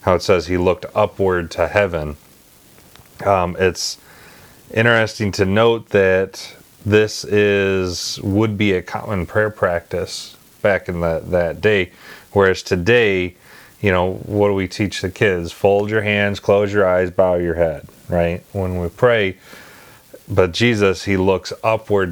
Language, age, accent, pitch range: English, 30-49, American, 90-105 Hz